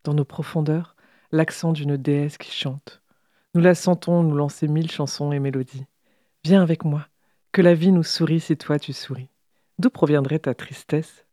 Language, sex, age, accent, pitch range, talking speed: French, female, 40-59, French, 150-175 Hz, 175 wpm